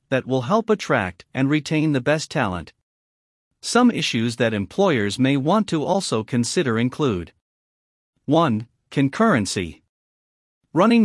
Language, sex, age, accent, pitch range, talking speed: English, male, 50-69, American, 115-170 Hz, 120 wpm